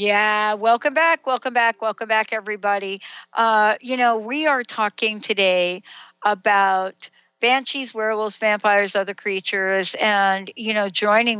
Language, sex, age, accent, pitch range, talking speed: English, female, 60-79, American, 195-240 Hz, 130 wpm